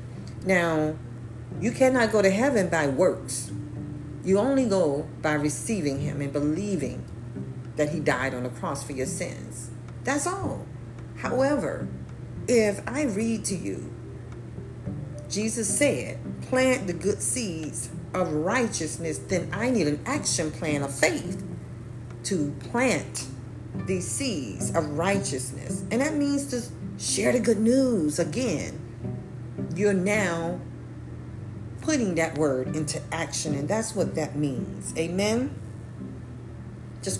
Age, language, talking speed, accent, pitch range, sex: 40-59, English, 125 wpm, American, 135-195 Hz, female